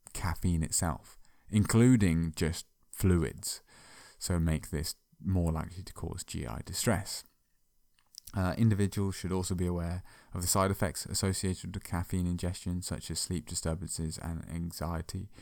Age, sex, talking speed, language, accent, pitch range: 20-39, male, 130 wpm, English, British, 80-95 Hz